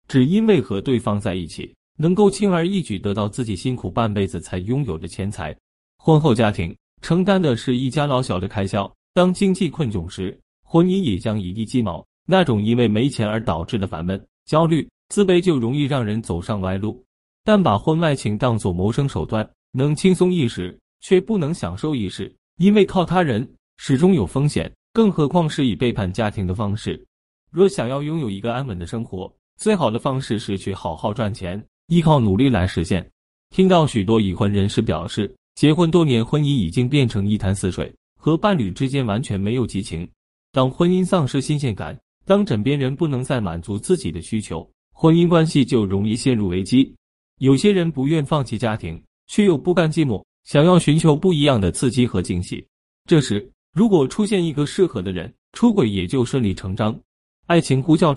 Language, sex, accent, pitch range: Chinese, male, native, 100-160 Hz